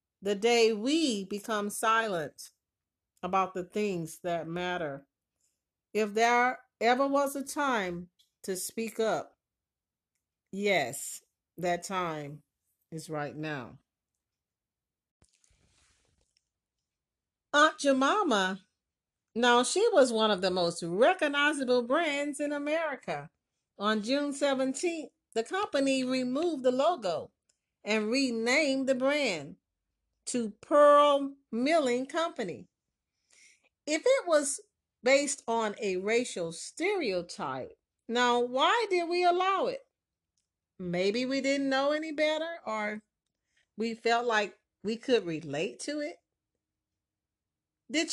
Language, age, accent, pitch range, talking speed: English, 40-59, American, 185-285 Hz, 105 wpm